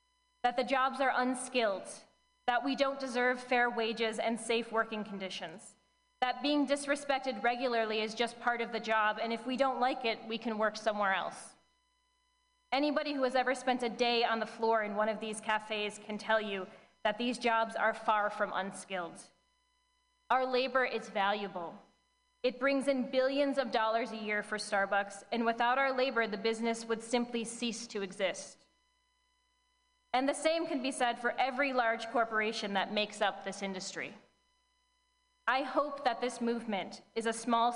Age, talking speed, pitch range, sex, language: 20-39, 175 wpm, 220-270 Hz, female, English